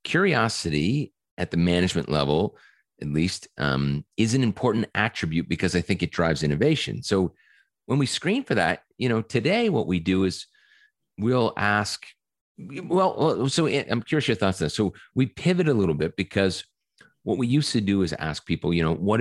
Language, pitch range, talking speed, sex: English, 85-115 Hz, 185 wpm, male